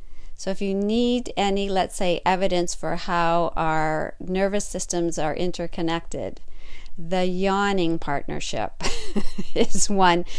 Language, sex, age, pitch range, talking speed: English, female, 50-69, 165-205 Hz, 115 wpm